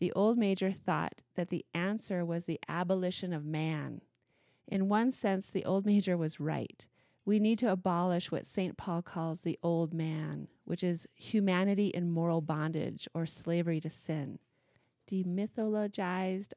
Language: English